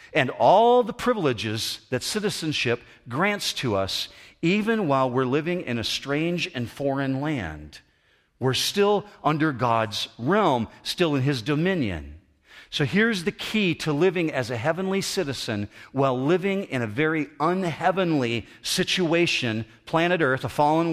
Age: 50-69